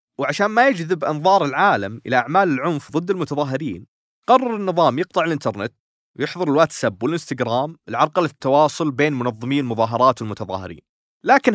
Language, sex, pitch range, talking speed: Arabic, male, 125-170 Hz, 125 wpm